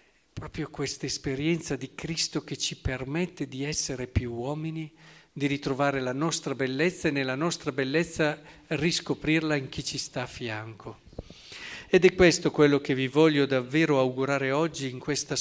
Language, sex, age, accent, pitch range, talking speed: Italian, male, 50-69, native, 120-150 Hz, 155 wpm